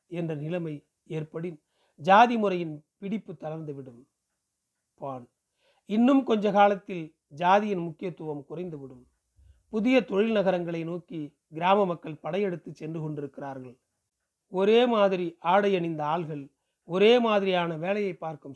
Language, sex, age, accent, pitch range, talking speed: Tamil, male, 40-59, native, 150-200 Hz, 100 wpm